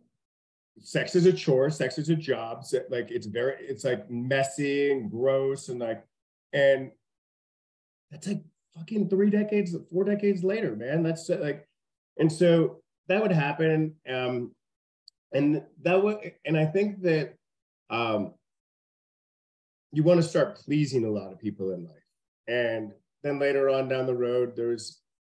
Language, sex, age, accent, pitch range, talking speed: English, male, 30-49, American, 125-165 Hz, 150 wpm